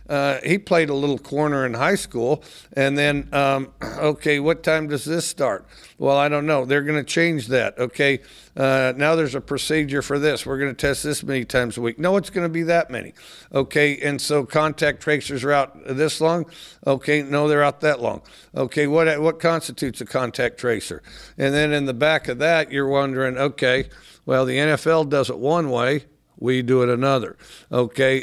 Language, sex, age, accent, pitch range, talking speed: English, male, 50-69, American, 130-150 Hz, 200 wpm